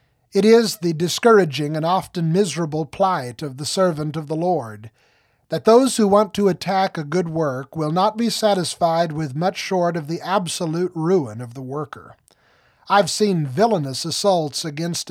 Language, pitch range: English, 150-200 Hz